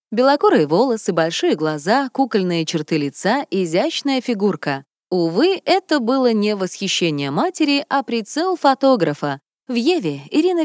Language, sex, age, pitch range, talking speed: Russian, female, 20-39, 175-260 Hz, 120 wpm